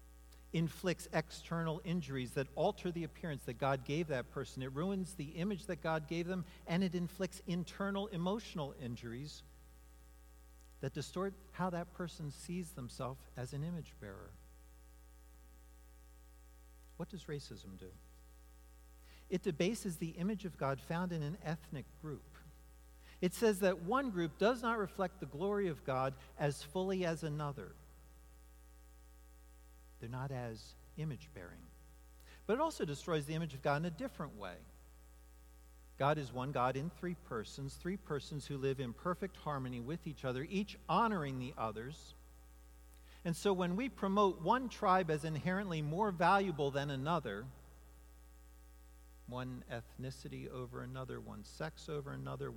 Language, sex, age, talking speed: English, male, 50-69, 145 wpm